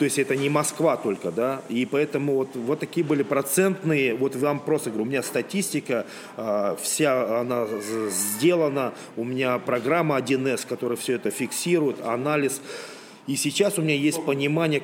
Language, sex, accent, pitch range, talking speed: Russian, male, native, 130-160 Hz, 160 wpm